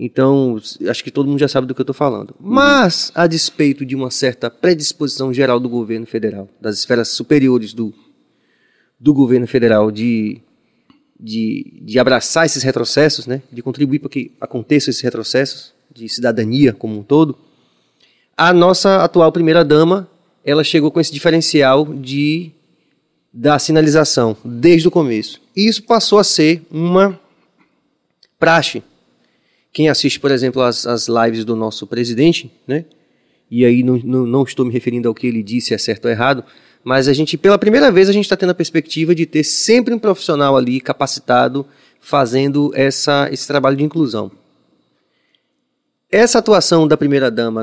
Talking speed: 155 wpm